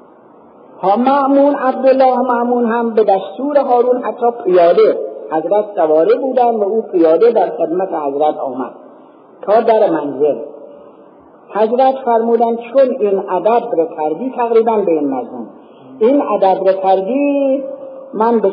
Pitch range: 175-260 Hz